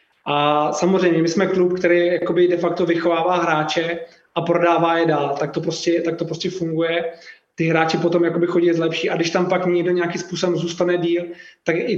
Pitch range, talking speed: 165-175 Hz, 190 wpm